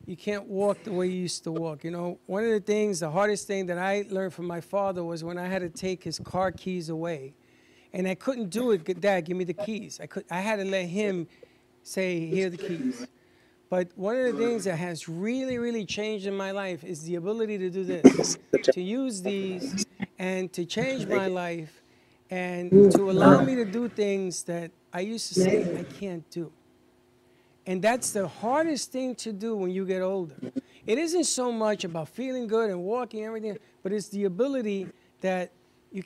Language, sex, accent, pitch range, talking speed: English, male, American, 180-220 Hz, 210 wpm